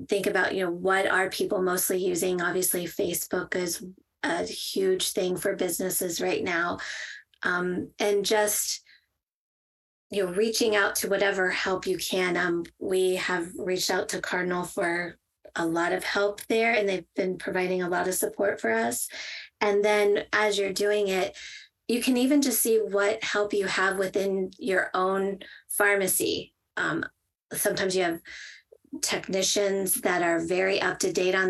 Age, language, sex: 20-39, English, female